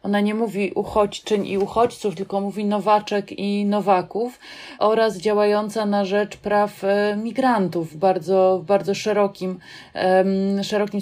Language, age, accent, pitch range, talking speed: Polish, 20-39, native, 185-210 Hz, 120 wpm